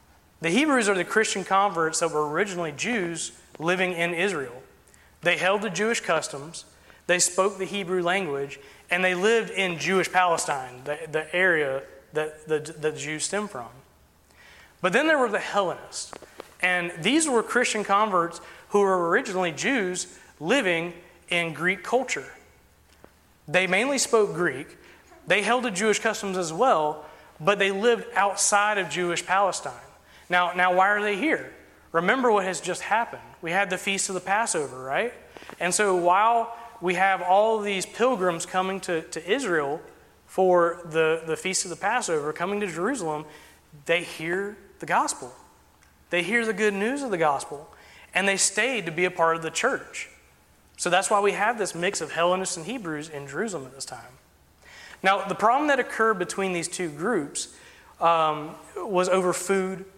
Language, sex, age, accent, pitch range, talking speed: English, male, 30-49, American, 165-200 Hz, 165 wpm